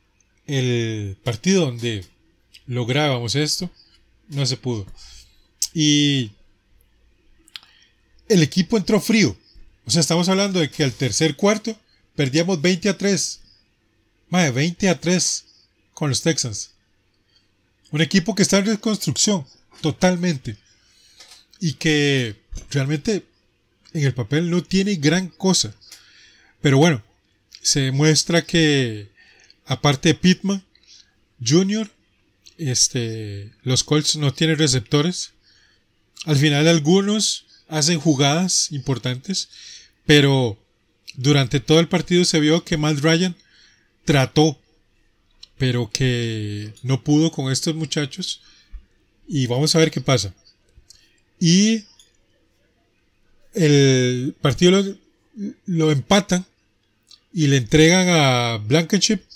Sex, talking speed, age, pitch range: male, 105 wpm, 30-49, 110-170 Hz